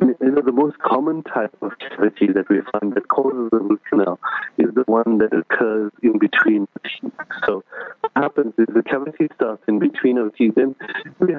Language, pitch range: English, 110-155 Hz